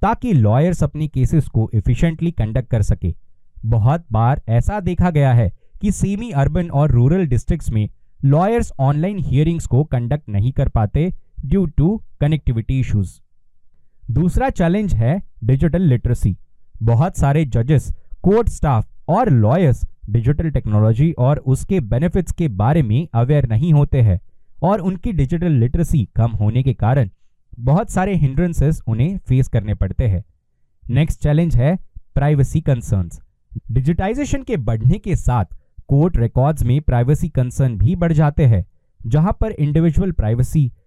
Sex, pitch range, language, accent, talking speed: male, 115-160 Hz, Hindi, native, 115 wpm